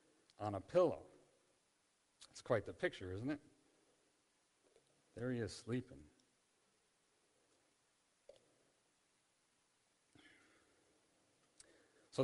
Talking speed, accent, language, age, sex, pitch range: 70 wpm, American, English, 50-69, male, 95-115 Hz